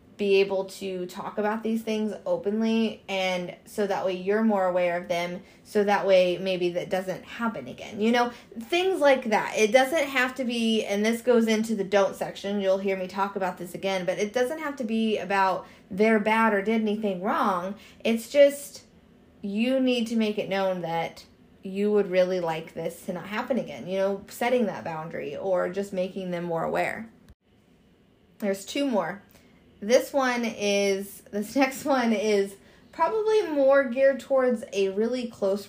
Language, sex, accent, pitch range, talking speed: English, female, American, 190-230 Hz, 180 wpm